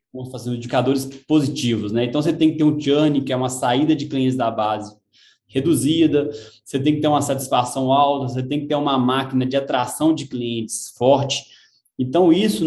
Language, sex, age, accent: Portuguese, male, 20-39, Brazilian